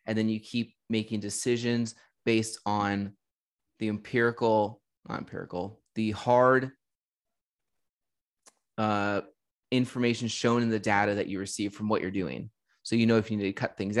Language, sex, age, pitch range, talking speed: English, male, 20-39, 100-120 Hz, 155 wpm